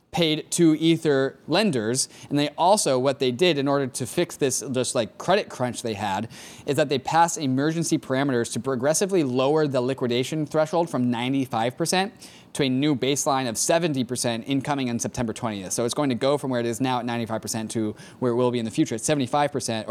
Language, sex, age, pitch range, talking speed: English, male, 20-39, 120-160 Hz, 200 wpm